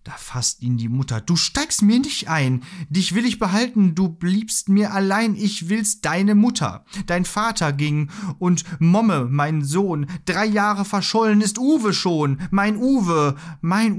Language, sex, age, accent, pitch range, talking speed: German, male, 30-49, German, 130-180 Hz, 165 wpm